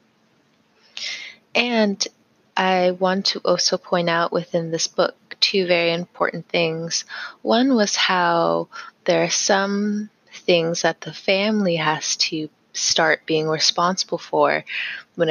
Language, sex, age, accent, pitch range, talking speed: English, female, 20-39, American, 155-185 Hz, 120 wpm